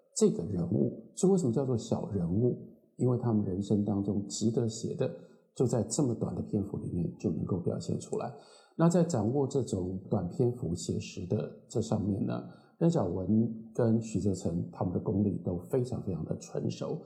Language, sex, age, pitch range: Chinese, male, 50-69, 105-145 Hz